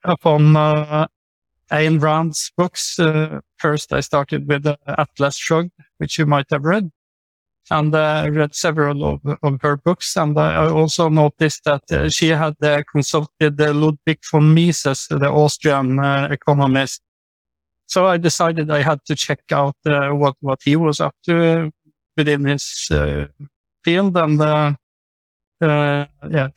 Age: 60-79